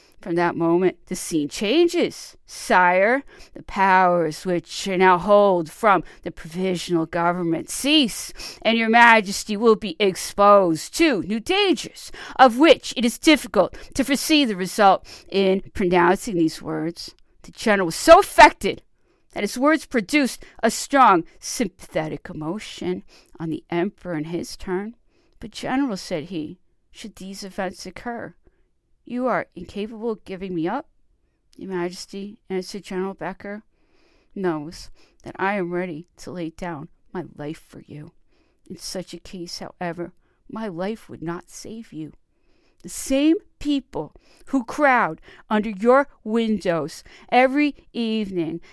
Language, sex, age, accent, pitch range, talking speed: English, female, 50-69, American, 175-245 Hz, 135 wpm